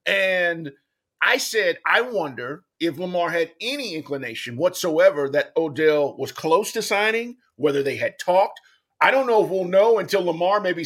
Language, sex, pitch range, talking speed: English, male, 165-230 Hz, 165 wpm